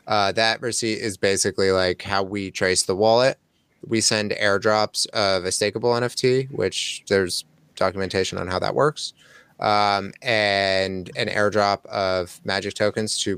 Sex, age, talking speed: male, 20-39, 150 wpm